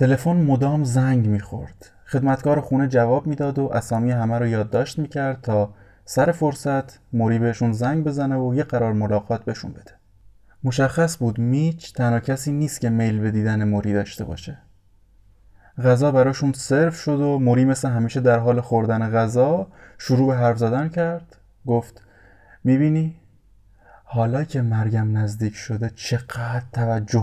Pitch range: 105-135 Hz